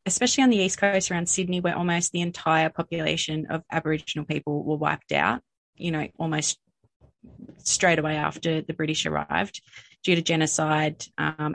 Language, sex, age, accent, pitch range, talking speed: English, female, 20-39, Australian, 155-175 Hz, 160 wpm